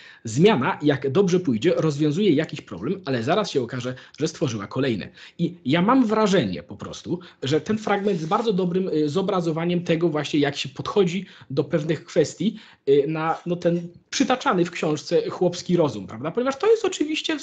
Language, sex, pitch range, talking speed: Polish, male, 150-200 Hz, 170 wpm